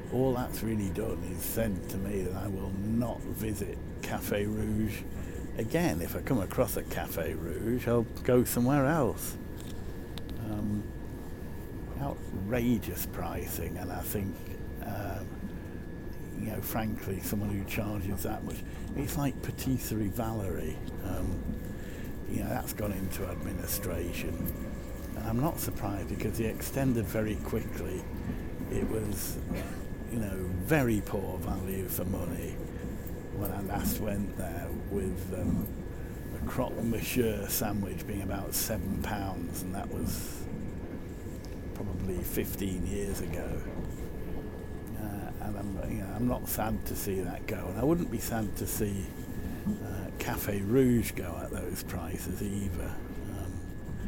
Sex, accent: male, British